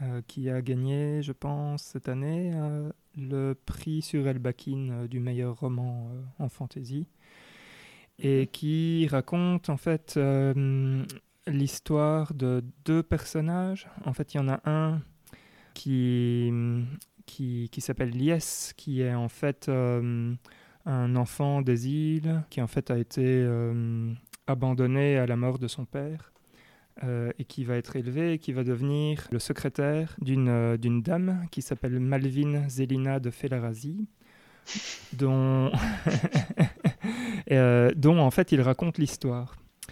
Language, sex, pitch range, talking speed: French, male, 125-150 Hz, 145 wpm